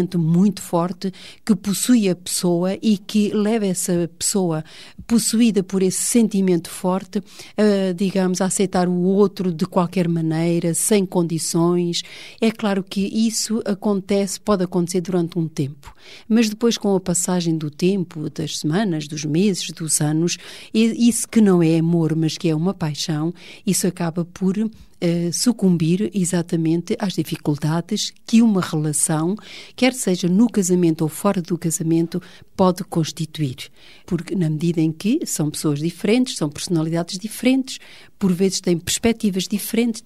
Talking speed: 145 wpm